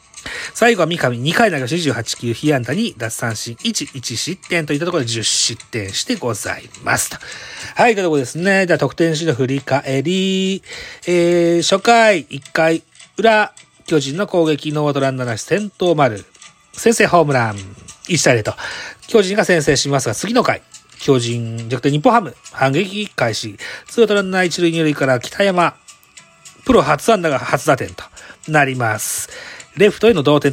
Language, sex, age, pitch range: Japanese, male, 40-59, 125-185 Hz